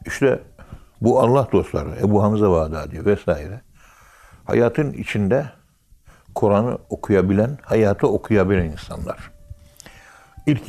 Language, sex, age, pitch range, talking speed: Turkish, male, 60-79, 85-115 Hz, 95 wpm